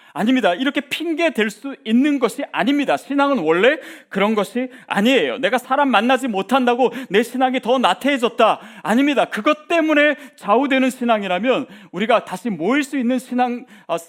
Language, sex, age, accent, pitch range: Korean, male, 40-59, native, 200-275 Hz